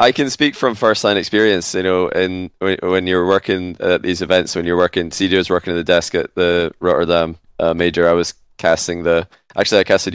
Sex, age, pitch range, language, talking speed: male, 20-39, 85-100 Hz, English, 215 wpm